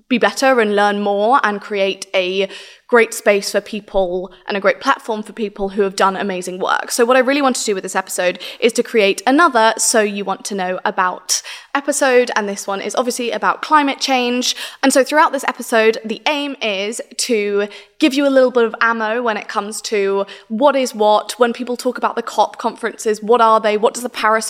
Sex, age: female, 20-39